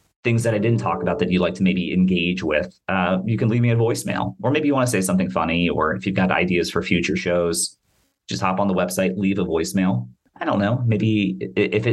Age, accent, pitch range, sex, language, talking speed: 30-49, American, 85-105 Hz, male, English, 245 wpm